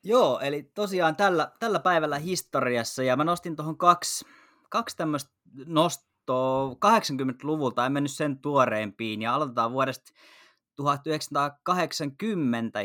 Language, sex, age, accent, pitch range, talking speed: Finnish, male, 20-39, native, 115-150 Hz, 110 wpm